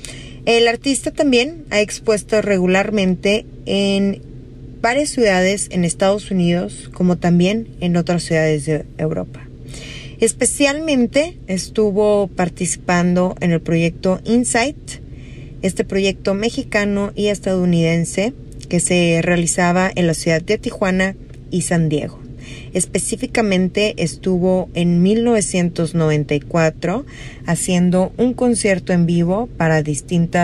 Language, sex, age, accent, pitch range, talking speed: Spanish, female, 20-39, Mexican, 160-210 Hz, 105 wpm